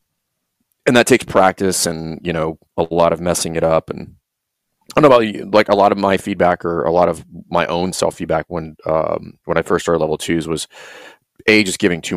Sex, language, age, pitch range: male, English, 30-49, 80-95 Hz